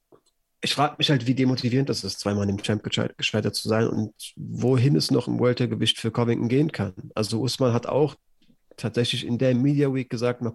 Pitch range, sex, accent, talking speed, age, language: 105-140 Hz, male, German, 205 wpm, 40-59, German